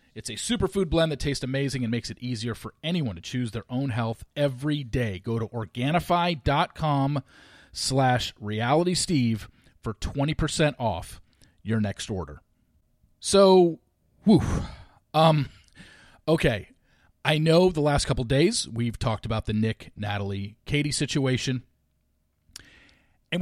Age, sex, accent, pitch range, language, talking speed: 40-59, male, American, 105-165 Hz, English, 135 wpm